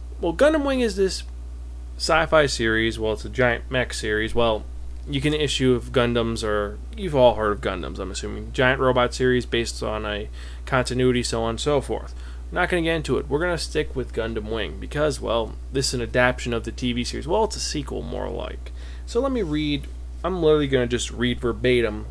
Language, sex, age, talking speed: English, male, 20-39, 210 wpm